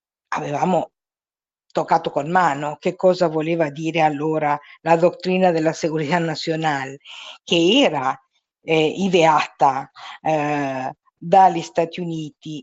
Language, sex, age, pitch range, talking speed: Italian, female, 50-69, 155-195 Hz, 105 wpm